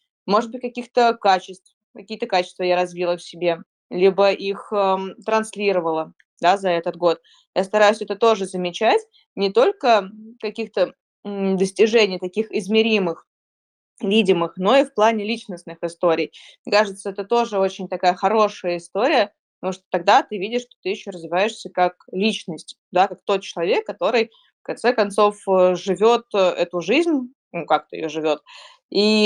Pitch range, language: 175-220 Hz, Russian